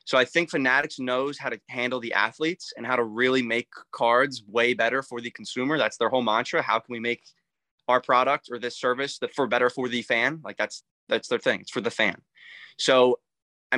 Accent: American